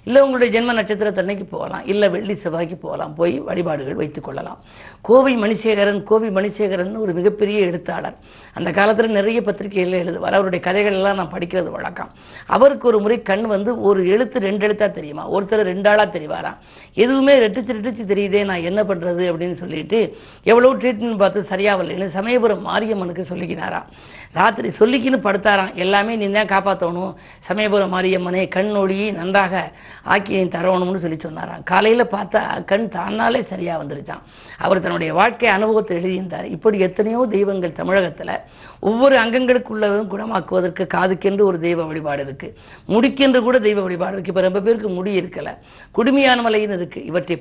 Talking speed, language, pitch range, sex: 140 wpm, Tamil, 180-215 Hz, female